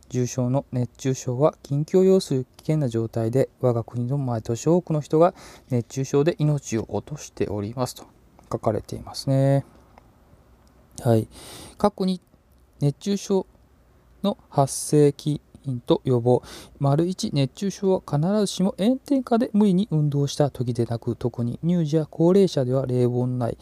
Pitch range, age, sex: 120-160 Hz, 20-39, male